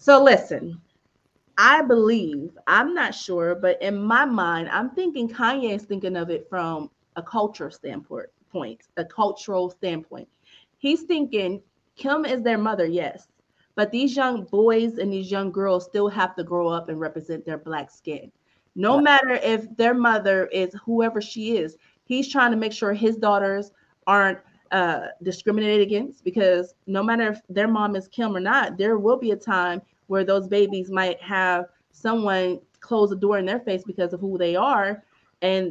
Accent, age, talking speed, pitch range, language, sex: American, 30-49, 175 wpm, 185-230 Hz, English, female